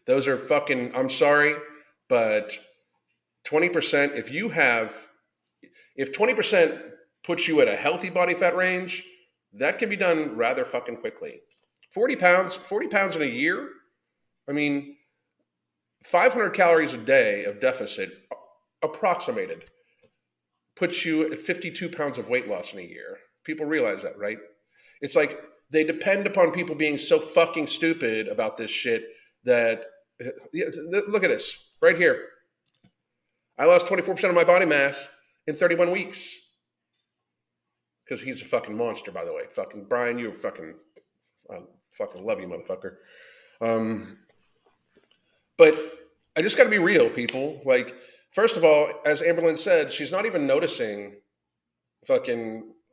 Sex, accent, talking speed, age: male, American, 145 wpm, 40-59